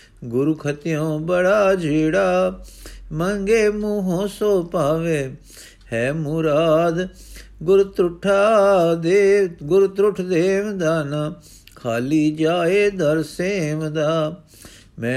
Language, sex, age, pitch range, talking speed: Punjabi, male, 50-69, 150-190 Hz, 80 wpm